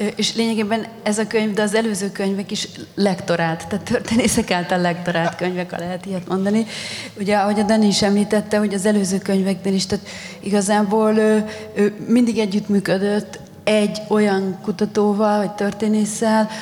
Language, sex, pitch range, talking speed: Hungarian, female, 195-220 Hz, 150 wpm